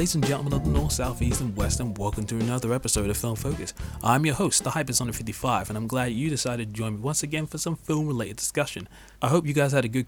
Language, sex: English, male